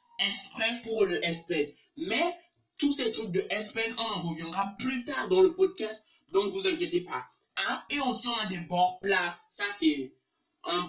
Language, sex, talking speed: French, male, 185 wpm